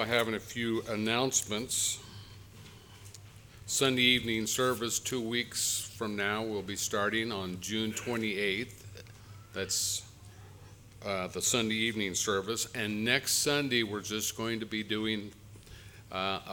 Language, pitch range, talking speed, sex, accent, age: English, 100-115 Hz, 120 wpm, male, American, 50-69